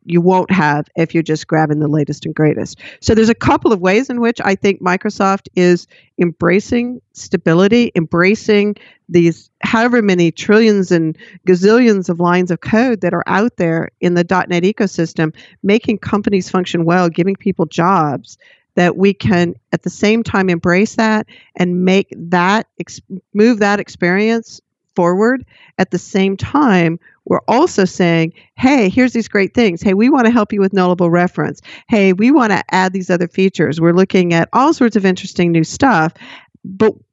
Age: 50-69